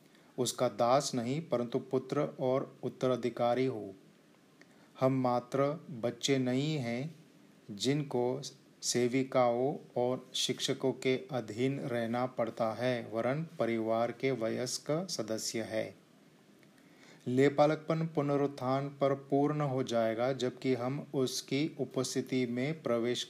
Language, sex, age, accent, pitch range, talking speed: Hindi, male, 30-49, native, 120-135 Hz, 105 wpm